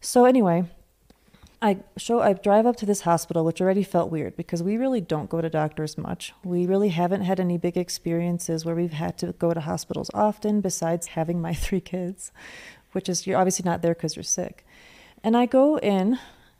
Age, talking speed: 30-49, 200 wpm